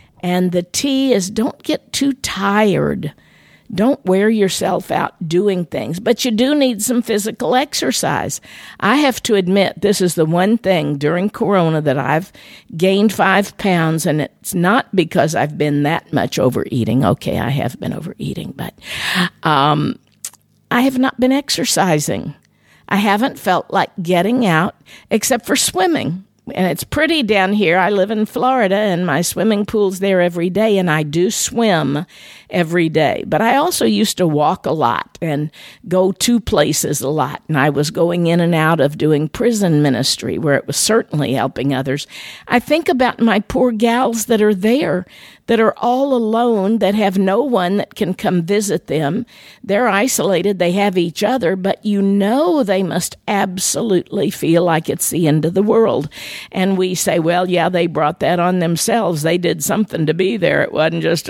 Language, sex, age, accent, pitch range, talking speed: English, female, 50-69, American, 170-225 Hz, 175 wpm